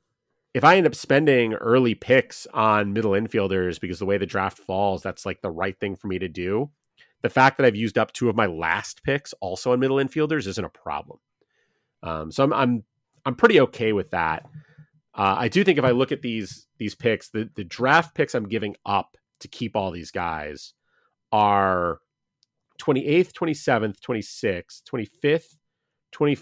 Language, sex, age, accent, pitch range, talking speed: English, male, 30-49, American, 100-145 Hz, 195 wpm